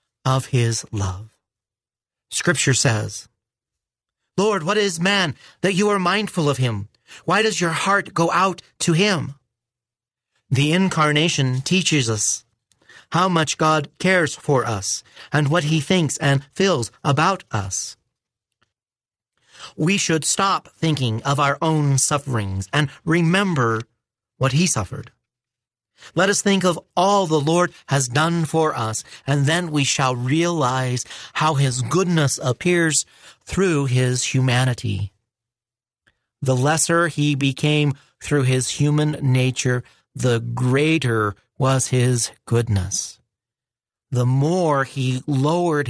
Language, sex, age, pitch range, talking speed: English, male, 40-59, 120-160 Hz, 125 wpm